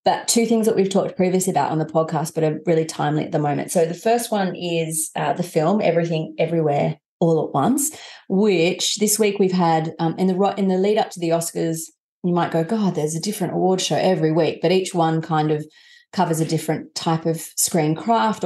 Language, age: English, 30-49